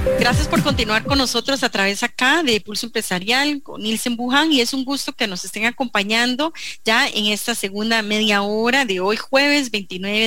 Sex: female